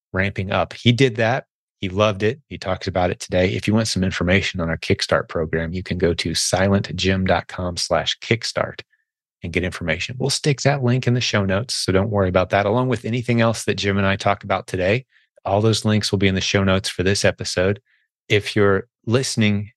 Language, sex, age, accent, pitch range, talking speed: English, male, 30-49, American, 90-105 Hz, 215 wpm